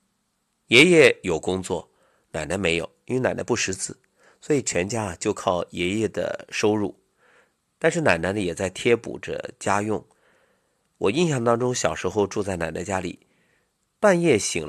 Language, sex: Chinese, male